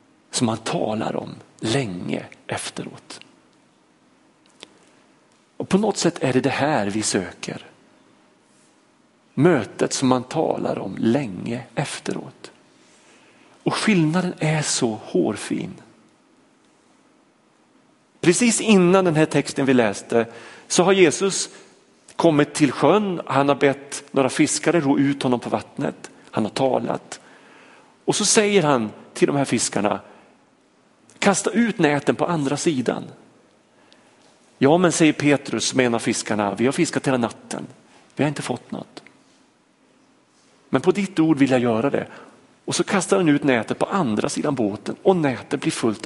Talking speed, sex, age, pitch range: 140 wpm, male, 40-59, 135-185 Hz